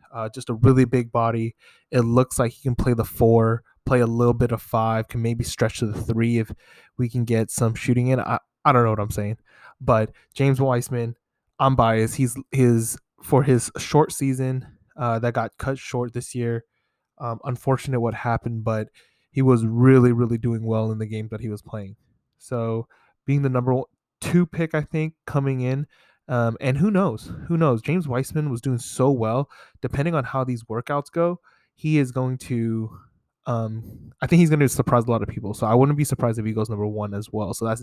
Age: 20-39